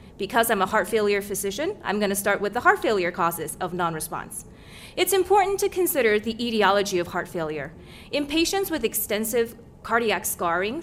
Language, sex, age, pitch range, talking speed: English, female, 30-49, 180-235 Hz, 175 wpm